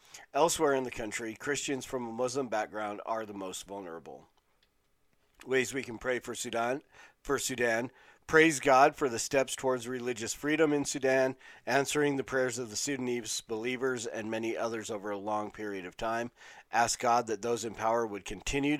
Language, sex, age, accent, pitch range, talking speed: English, male, 40-59, American, 110-130 Hz, 175 wpm